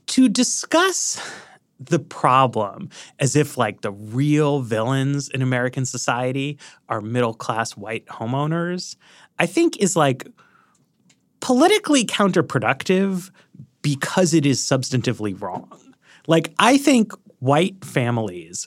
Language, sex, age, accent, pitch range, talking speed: English, male, 30-49, American, 120-160 Hz, 105 wpm